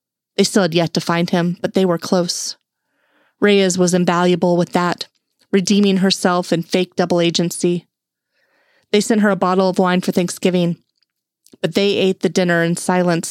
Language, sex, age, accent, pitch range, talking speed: English, female, 30-49, American, 170-195 Hz, 170 wpm